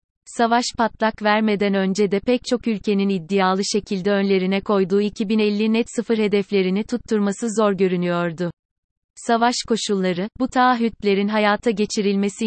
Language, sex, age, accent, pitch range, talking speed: Turkish, female, 30-49, native, 195-225 Hz, 120 wpm